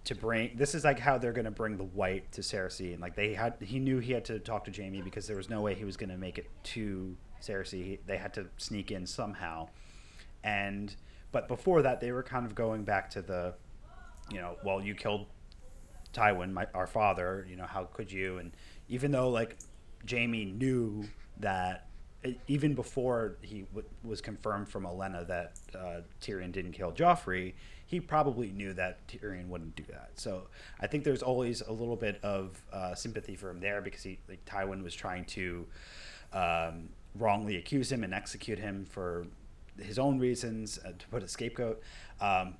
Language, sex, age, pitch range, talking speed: English, male, 30-49, 90-115 Hz, 195 wpm